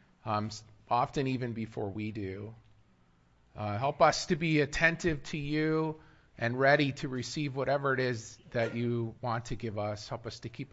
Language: English